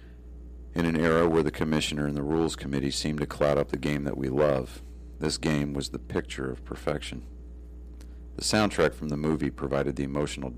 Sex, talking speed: male, 195 wpm